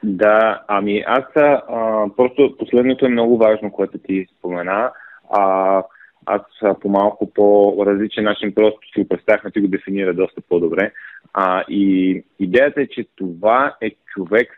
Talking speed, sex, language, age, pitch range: 145 wpm, male, Bulgarian, 30-49, 105-135 Hz